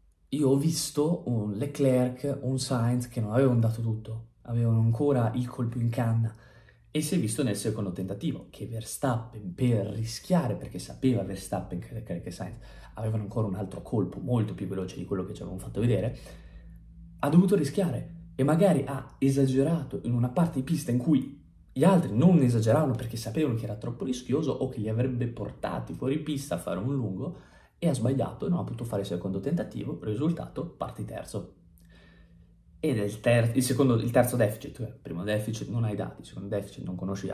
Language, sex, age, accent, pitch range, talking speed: Italian, male, 20-39, native, 105-135 Hz, 190 wpm